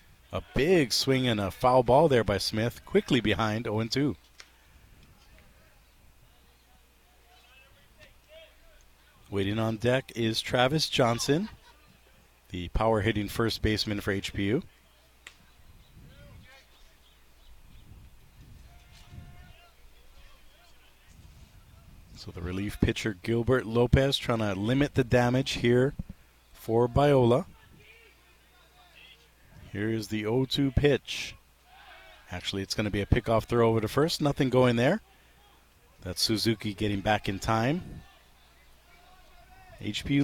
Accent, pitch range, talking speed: American, 95-130 Hz, 95 wpm